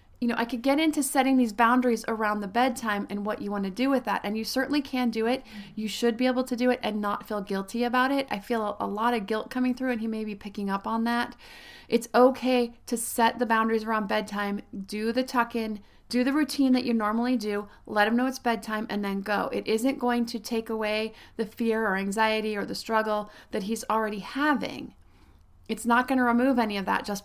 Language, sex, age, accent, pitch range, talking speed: English, female, 30-49, American, 200-235 Hz, 240 wpm